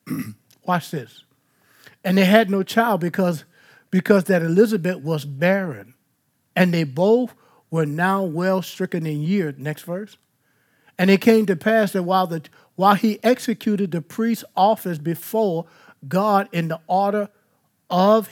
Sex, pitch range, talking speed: male, 145-195 Hz, 145 wpm